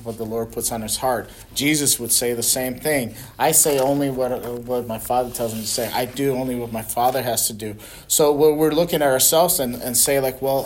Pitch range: 120-160 Hz